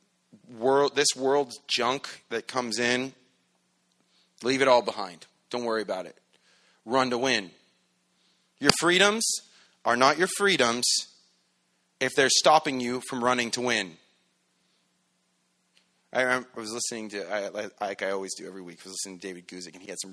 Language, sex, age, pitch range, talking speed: English, male, 30-49, 105-155 Hz, 160 wpm